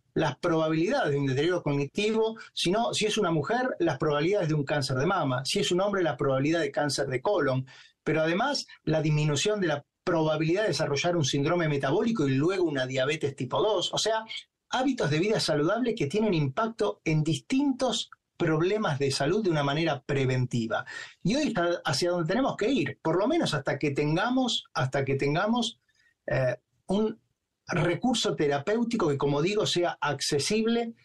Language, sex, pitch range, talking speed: Spanish, male, 145-210 Hz, 175 wpm